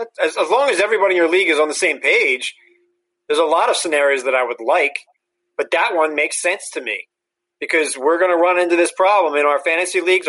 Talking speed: 235 wpm